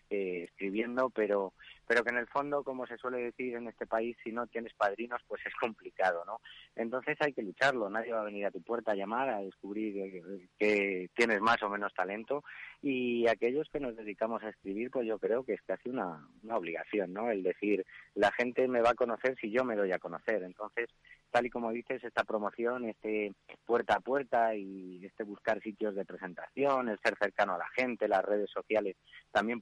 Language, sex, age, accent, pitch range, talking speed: Spanish, male, 30-49, Spanish, 100-120 Hz, 210 wpm